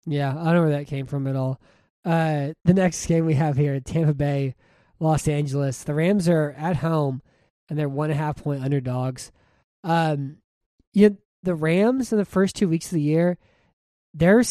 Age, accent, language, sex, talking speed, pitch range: 20-39, American, English, male, 180 wpm, 140-170 Hz